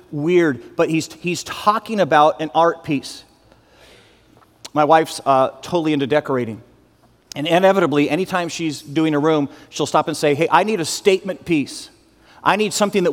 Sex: male